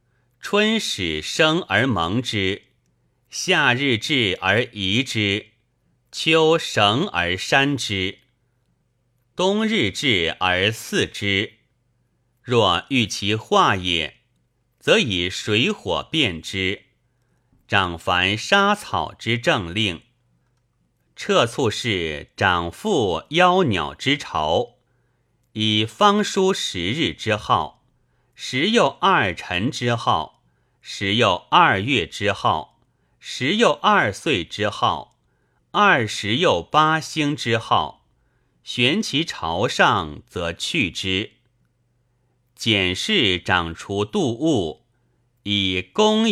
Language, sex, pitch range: Chinese, male, 100-130 Hz